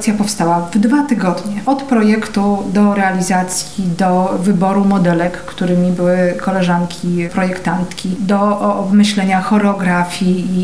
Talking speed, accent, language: 105 wpm, native, Polish